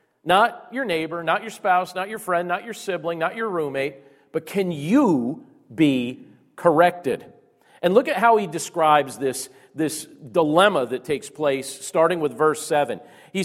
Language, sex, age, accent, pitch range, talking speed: English, male, 40-59, American, 145-205 Hz, 165 wpm